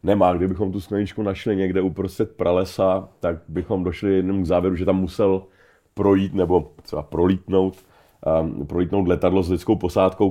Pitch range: 80-100 Hz